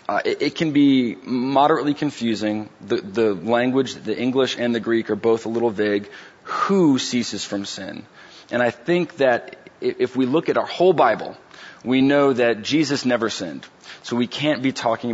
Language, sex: English, male